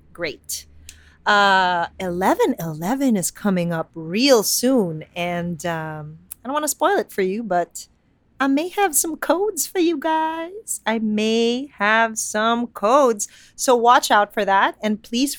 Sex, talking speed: female, 150 wpm